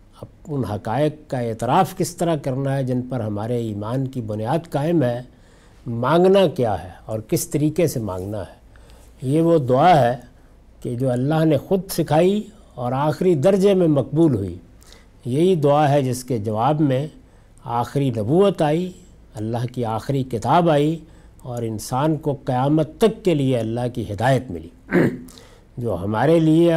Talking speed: 160 wpm